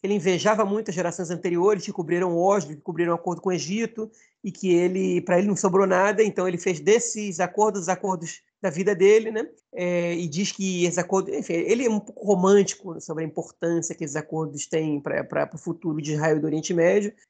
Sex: male